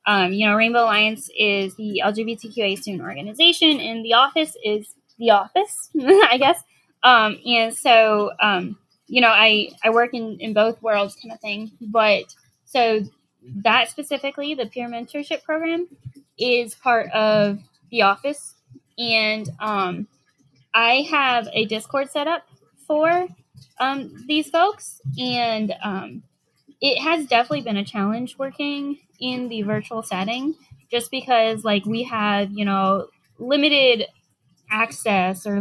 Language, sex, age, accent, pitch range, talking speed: English, female, 10-29, American, 200-240 Hz, 140 wpm